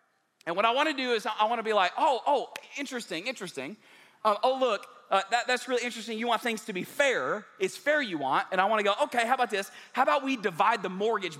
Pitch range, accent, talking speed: 210-280 Hz, American, 255 wpm